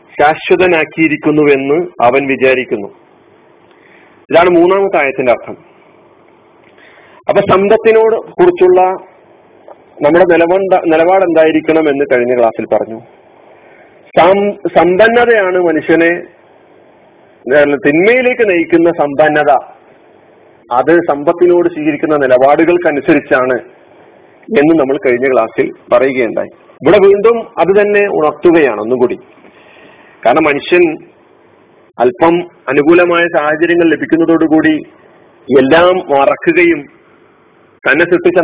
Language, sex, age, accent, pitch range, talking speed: Malayalam, male, 40-59, native, 145-190 Hz, 75 wpm